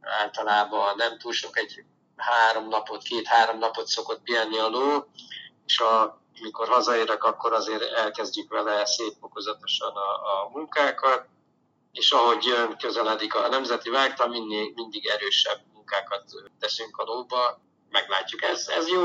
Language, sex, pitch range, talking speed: Hungarian, male, 115-135 Hz, 130 wpm